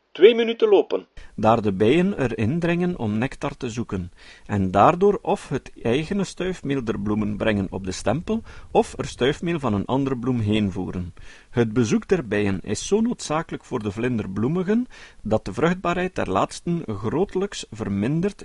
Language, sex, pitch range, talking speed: Dutch, male, 105-175 Hz, 160 wpm